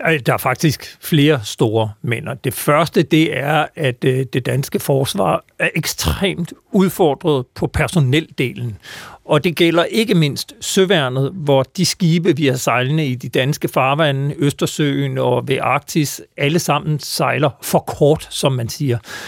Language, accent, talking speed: Danish, native, 145 wpm